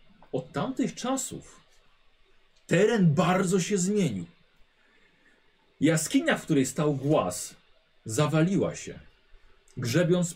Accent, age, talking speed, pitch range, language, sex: native, 40-59, 85 wpm, 120-165 Hz, Polish, male